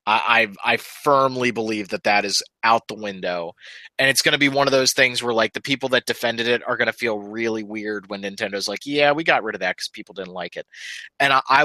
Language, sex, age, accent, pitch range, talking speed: English, male, 30-49, American, 105-140 Hz, 250 wpm